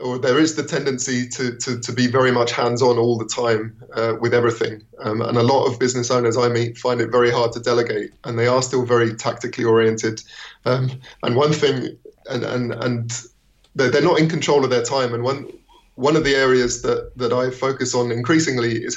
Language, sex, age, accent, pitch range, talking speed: English, male, 20-39, British, 120-135 Hz, 210 wpm